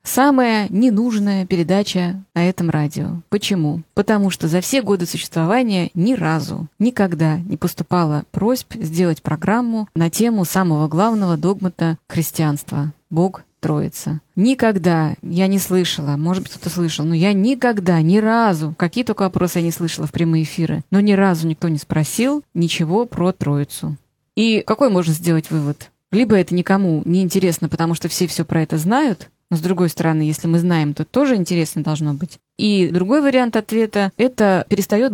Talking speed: 165 wpm